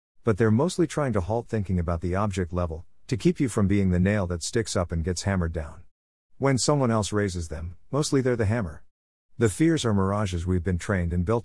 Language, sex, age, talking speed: English, male, 50-69, 225 wpm